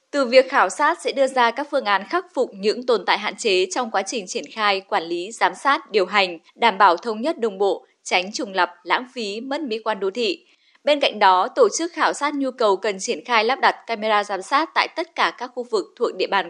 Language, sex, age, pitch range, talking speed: Vietnamese, female, 10-29, 210-315 Hz, 255 wpm